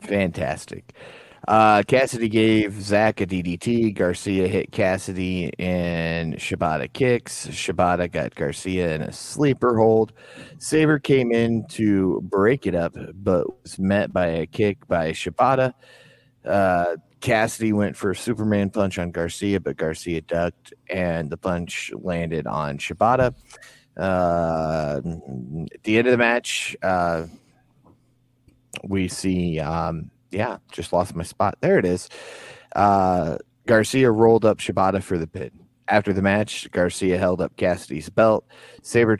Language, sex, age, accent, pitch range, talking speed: English, male, 30-49, American, 90-110 Hz, 135 wpm